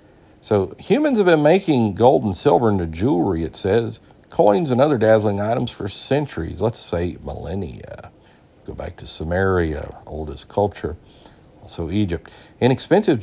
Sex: male